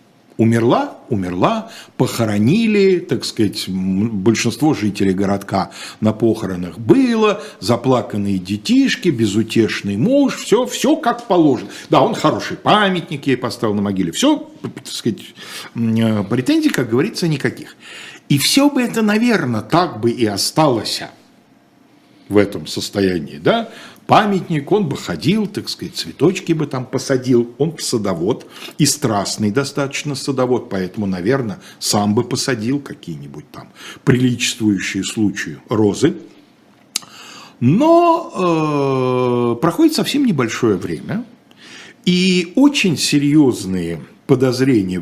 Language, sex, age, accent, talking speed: Russian, male, 60-79, native, 110 wpm